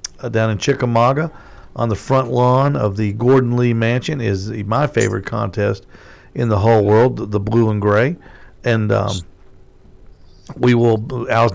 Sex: male